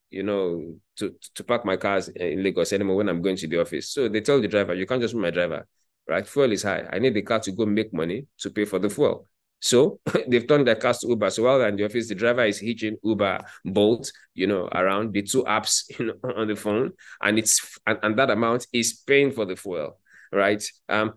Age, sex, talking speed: 20-39, male, 250 wpm